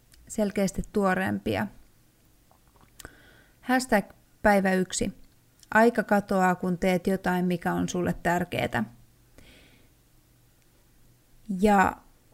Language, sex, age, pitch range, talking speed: Finnish, female, 30-49, 180-220 Hz, 75 wpm